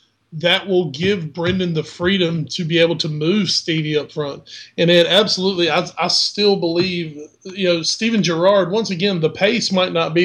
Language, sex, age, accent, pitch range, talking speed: English, male, 30-49, American, 155-185 Hz, 185 wpm